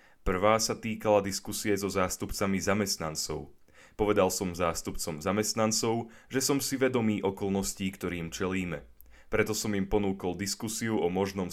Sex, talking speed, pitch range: male, 130 wpm, 90-110 Hz